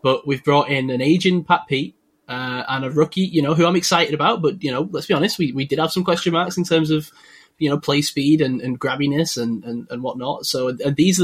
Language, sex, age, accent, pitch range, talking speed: English, male, 10-29, British, 125-155 Hz, 260 wpm